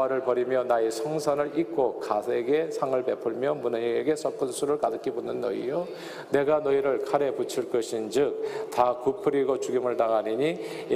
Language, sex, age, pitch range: Korean, male, 40-59, 115-155 Hz